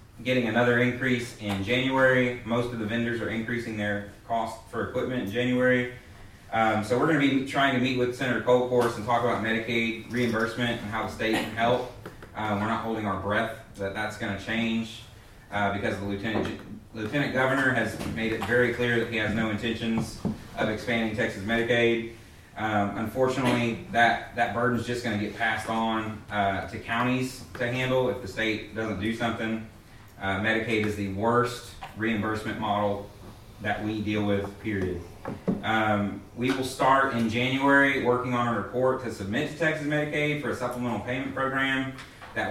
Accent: American